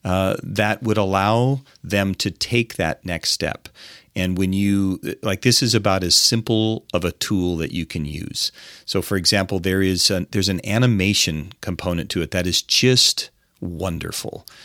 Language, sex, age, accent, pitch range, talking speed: English, male, 40-59, American, 95-110 Hz, 175 wpm